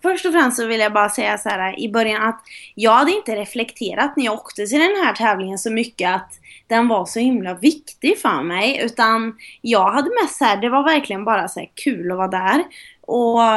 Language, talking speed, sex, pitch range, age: English, 215 wpm, female, 195-255 Hz, 20-39